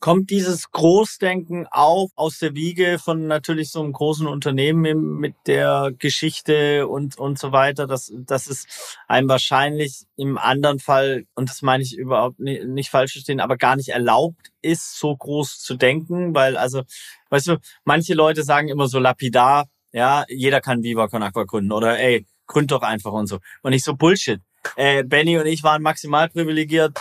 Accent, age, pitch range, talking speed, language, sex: German, 30-49, 130-150 Hz, 180 wpm, German, male